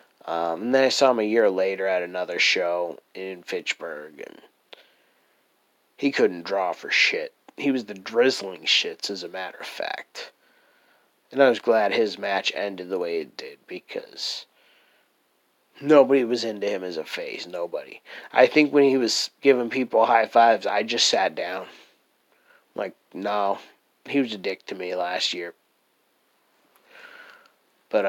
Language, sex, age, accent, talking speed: English, male, 30-49, American, 160 wpm